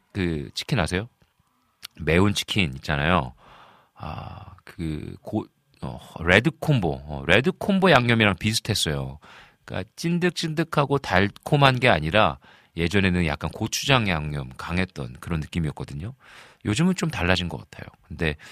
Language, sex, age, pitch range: Korean, male, 40-59, 85-130 Hz